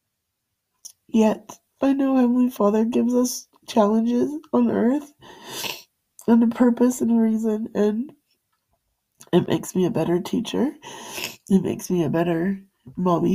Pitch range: 220-310 Hz